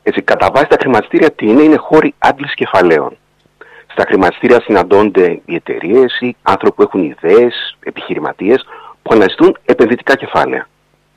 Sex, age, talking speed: male, 50-69, 125 wpm